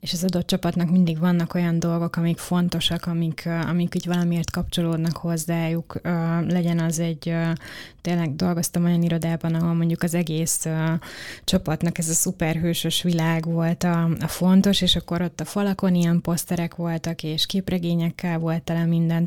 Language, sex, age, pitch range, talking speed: Hungarian, female, 20-39, 165-180 Hz, 165 wpm